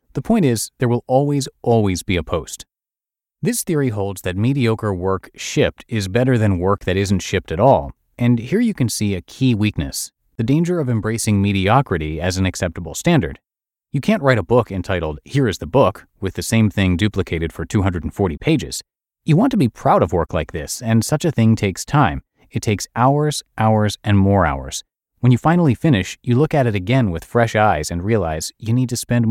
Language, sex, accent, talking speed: English, male, American, 205 wpm